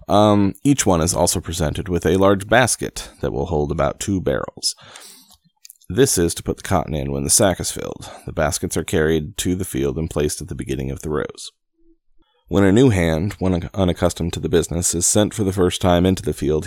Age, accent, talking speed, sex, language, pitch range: 30-49, American, 225 wpm, male, English, 80-95 Hz